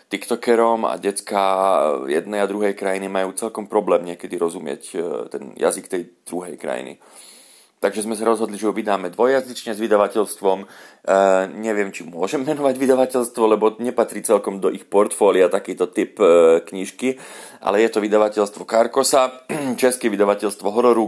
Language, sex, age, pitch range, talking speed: Slovak, male, 40-59, 95-115 Hz, 145 wpm